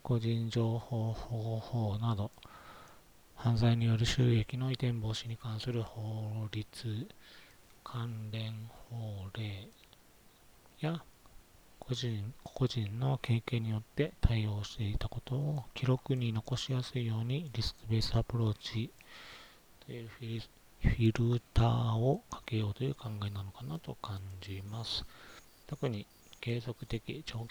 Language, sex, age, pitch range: Japanese, male, 40-59, 105-120 Hz